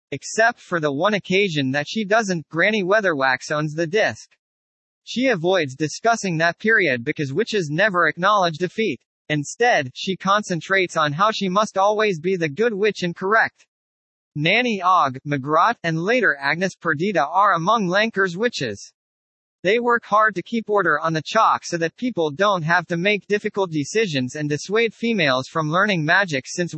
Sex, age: male, 40-59